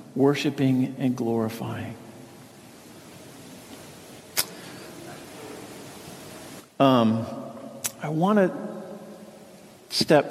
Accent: American